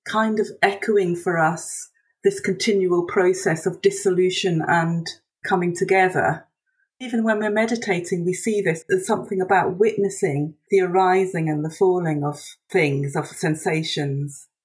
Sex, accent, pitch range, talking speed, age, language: female, British, 165-210 Hz, 135 wpm, 40-59, English